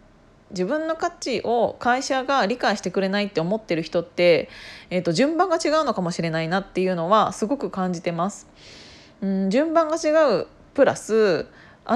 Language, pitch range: Japanese, 180-270 Hz